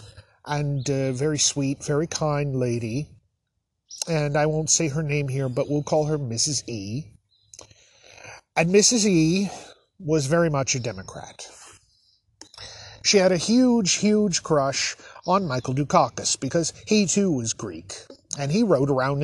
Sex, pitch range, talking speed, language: male, 120-170 Hz, 145 wpm, English